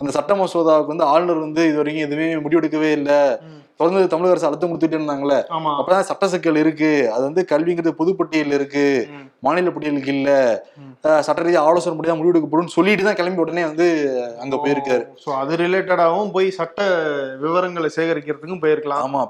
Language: Tamil